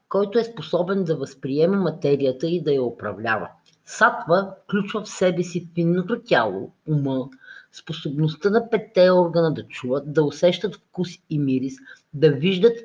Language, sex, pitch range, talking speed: Bulgarian, female, 145-185 Hz, 145 wpm